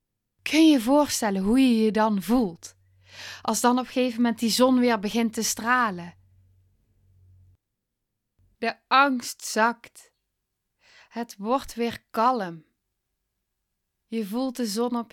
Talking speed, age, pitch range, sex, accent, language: 130 wpm, 10-29, 195-270 Hz, female, Dutch, Dutch